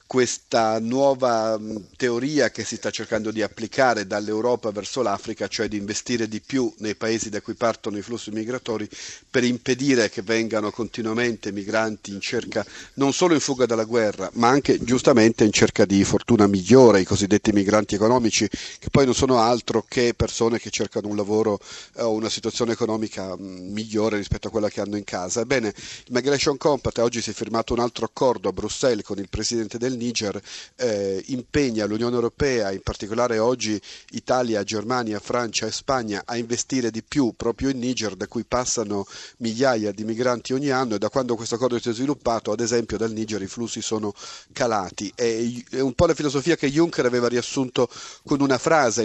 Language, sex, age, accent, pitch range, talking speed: Italian, male, 40-59, native, 105-125 Hz, 160 wpm